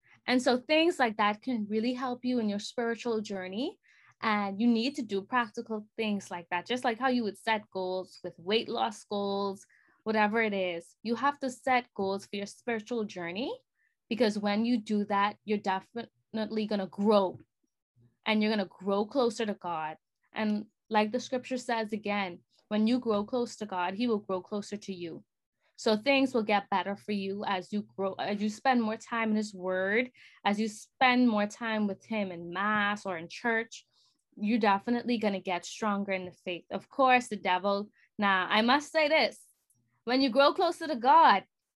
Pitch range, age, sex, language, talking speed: 200-250 Hz, 20-39, female, English, 195 wpm